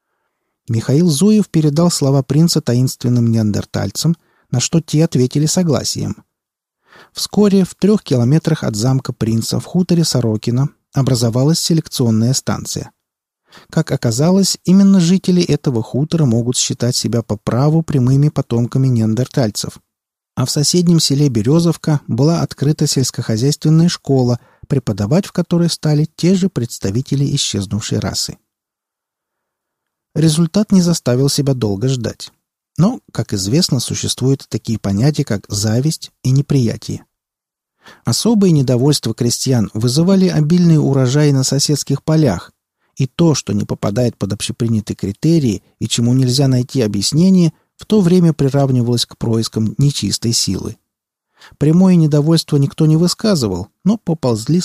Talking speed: 120 wpm